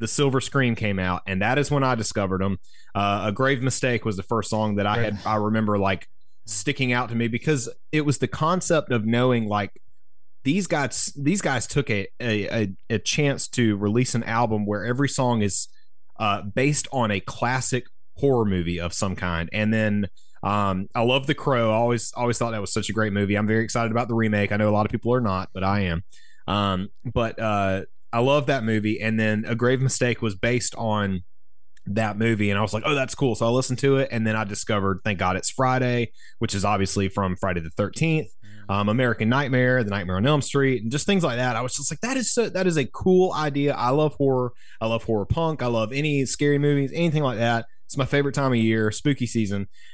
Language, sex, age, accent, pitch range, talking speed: English, male, 30-49, American, 105-130 Hz, 230 wpm